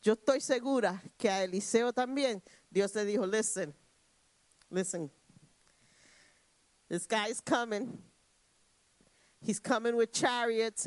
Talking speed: 105 wpm